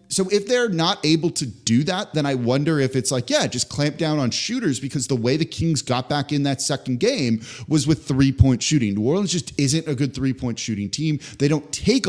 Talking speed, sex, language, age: 245 wpm, male, English, 30-49